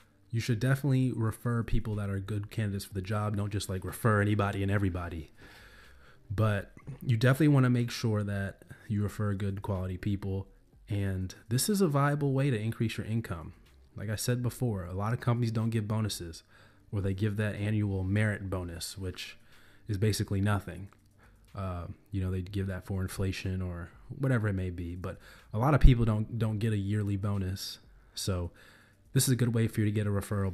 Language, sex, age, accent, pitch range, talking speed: English, male, 20-39, American, 95-115 Hz, 195 wpm